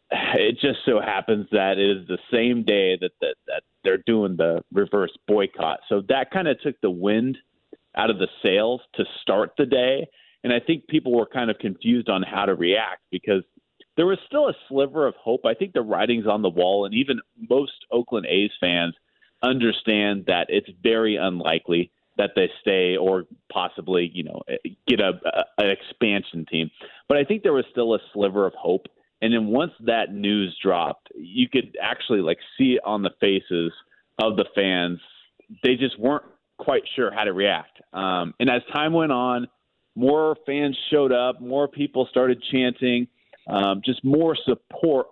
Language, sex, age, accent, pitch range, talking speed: English, male, 30-49, American, 100-145 Hz, 185 wpm